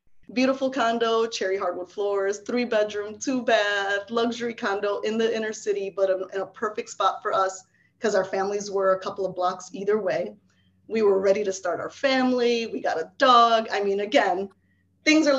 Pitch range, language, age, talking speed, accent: 190-240 Hz, English, 20-39, 185 wpm, American